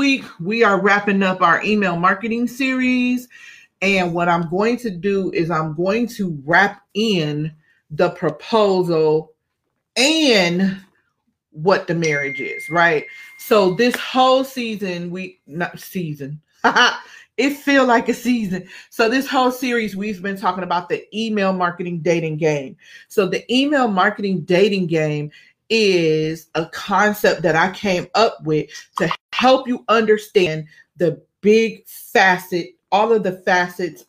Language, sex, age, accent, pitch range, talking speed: English, female, 30-49, American, 170-225 Hz, 140 wpm